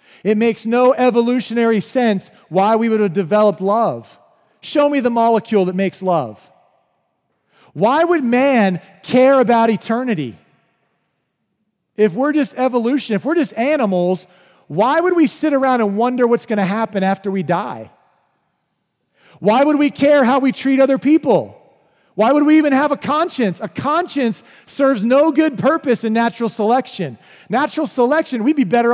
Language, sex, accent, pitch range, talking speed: English, male, American, 185-260 Hz, 160 wpm